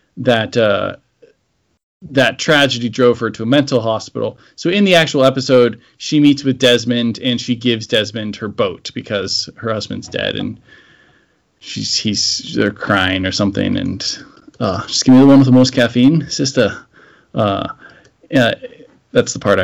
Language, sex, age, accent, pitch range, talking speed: English, male, 20-39, American, 115-145 Hz, 160 wpm